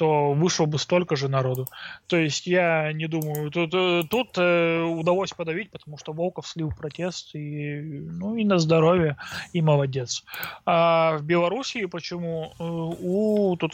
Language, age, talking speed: Russian, 20-39, 140 wpm